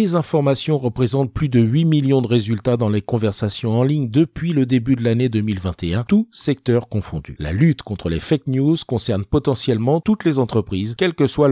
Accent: French